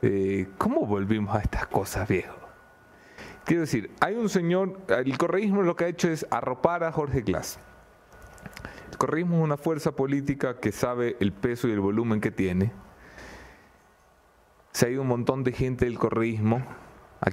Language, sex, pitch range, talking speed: English, male, 100-145 Hz, 170 wpm